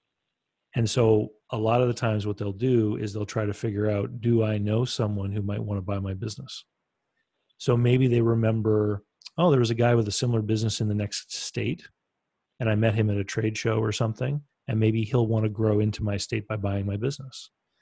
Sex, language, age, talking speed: male, English, 40-59, 225 wpm